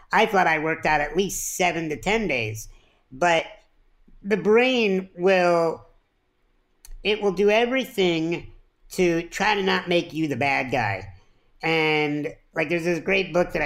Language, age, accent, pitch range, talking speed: English, 50-69, American, 145-185 Hz, 155 wpm